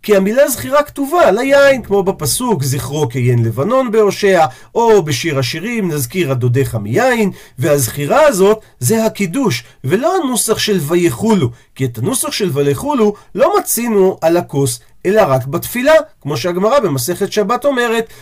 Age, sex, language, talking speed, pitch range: 40-59, male, Hebrew, 140 wpm, 140-230 Hz